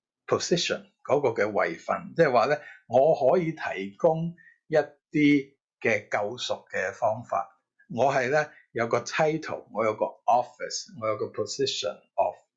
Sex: male